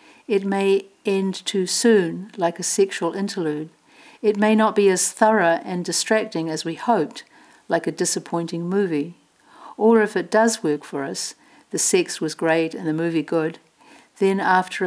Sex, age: female, 60-79